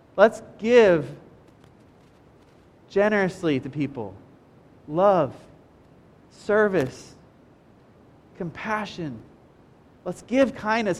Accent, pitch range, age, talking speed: American, 160-230 Hz, 30-49, 60 wpm